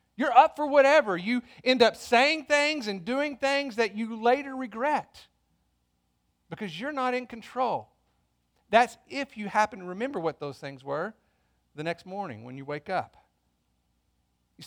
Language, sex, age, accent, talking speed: English, male, 50-69, American, 160 wpm